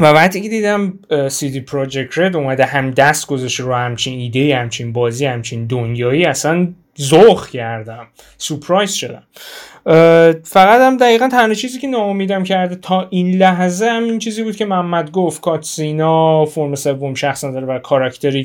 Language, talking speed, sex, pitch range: Persian, 155 wpm, male, 135-170 Hz